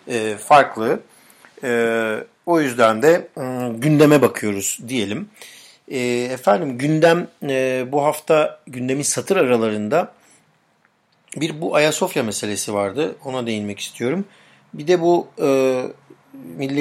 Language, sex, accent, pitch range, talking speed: Turkish, male, native, 120-155 Hz, 110 wpm